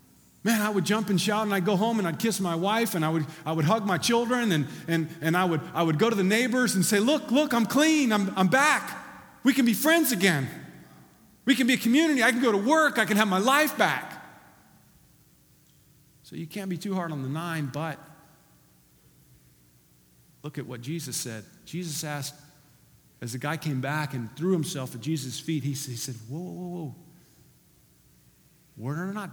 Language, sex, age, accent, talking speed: English, male, 40-59, American, 210 wpm